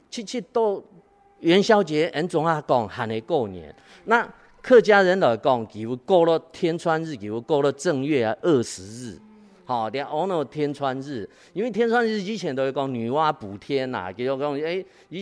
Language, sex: Chinese, male